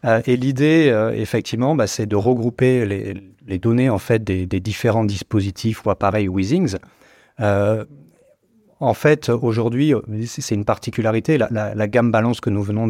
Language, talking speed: French, 165 wpm